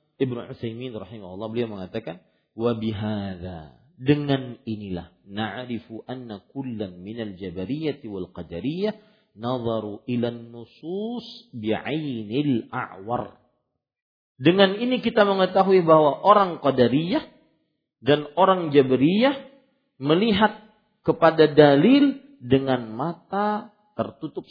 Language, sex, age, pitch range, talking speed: Malay, male, 50-69, 115-195 Hz, 90 wpm